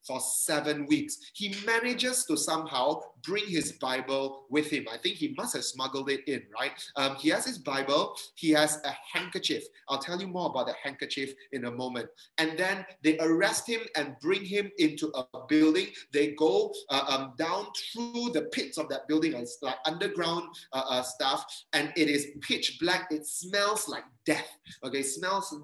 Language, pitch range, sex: English, 135-200 Hz, male